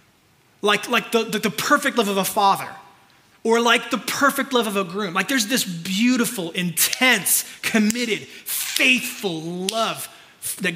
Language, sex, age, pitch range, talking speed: English, male, 20-39, 165-220 Hz, 150 wpm